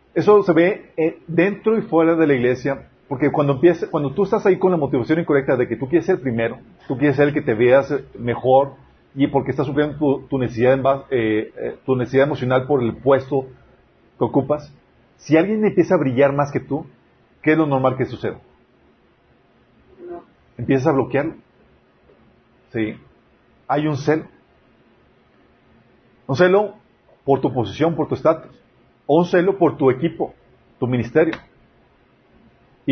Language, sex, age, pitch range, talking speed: Spanish, male, 40-59, 130-160 Hz, 160 wpm